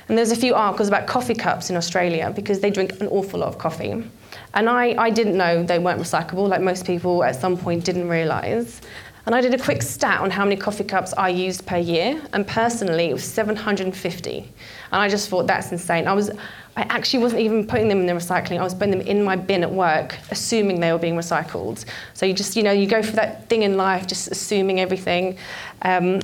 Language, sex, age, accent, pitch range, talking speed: English, female, 20-39, British, 180-215 Hz, 230 wpm